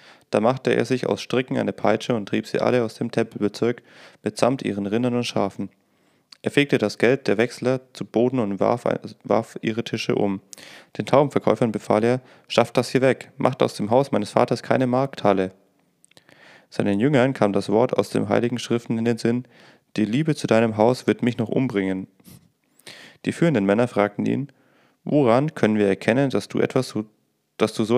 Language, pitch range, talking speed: German, 105-130 Hz, 180 wpm